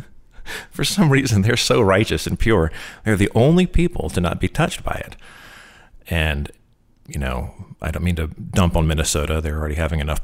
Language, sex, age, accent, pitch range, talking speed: English, male, 30-49, American, 80-110 Hz, 190 wpm